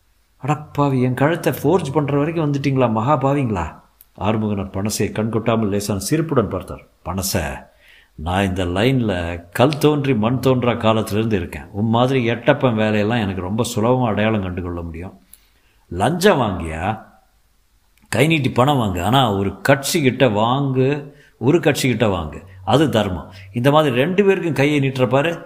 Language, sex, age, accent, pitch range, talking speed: Tamil, male, 50-69, native, 100-140 Hz, 125 wpm